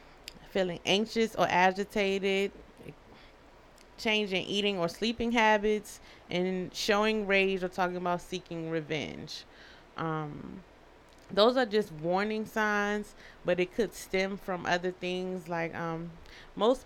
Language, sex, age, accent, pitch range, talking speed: English, female, 30-49, American, 170-205 Hz, 115 wpm